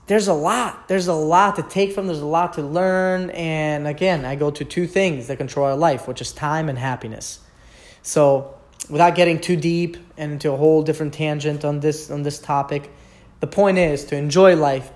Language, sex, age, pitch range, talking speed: English, male, 30-49, 130-165 Hz, 210 wpm